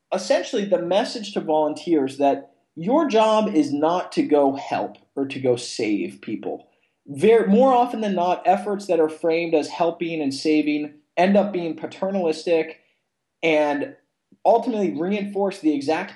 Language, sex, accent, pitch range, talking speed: English, male, American, 150-200 Hz, 145 wpm